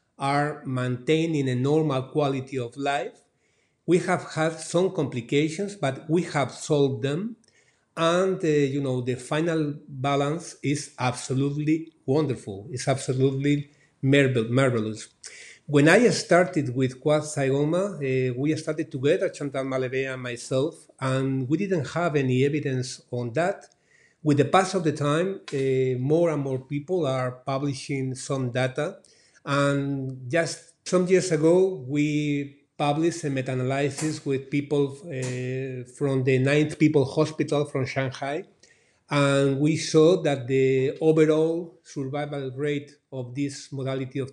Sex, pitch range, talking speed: male, 135-160 Hz, 135 wpm